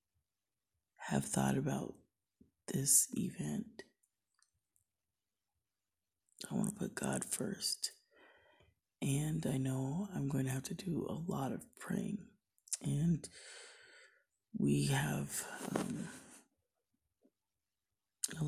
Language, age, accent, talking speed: English, 20-39, American, 95 wpm